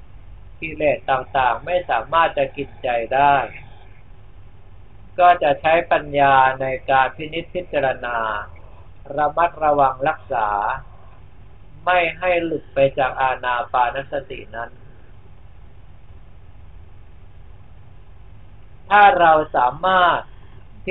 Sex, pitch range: male, 100-150 Hz